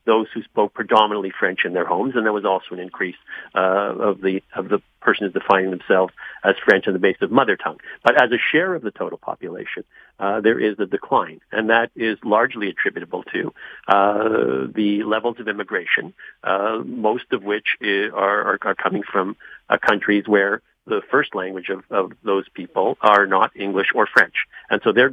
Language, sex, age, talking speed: English, male, 50-69, 190 wpm